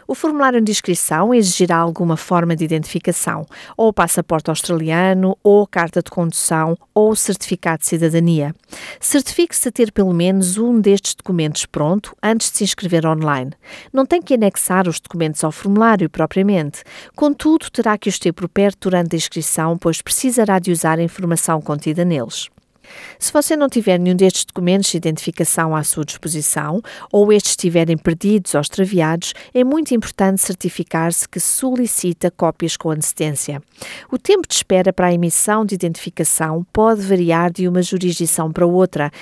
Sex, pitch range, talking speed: female, 165-210 Hz, 160 wpm